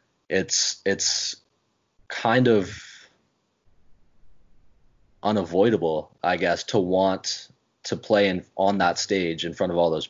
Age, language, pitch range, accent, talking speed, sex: 20-39, English, 85-100 Hz, American, 120 wpm, male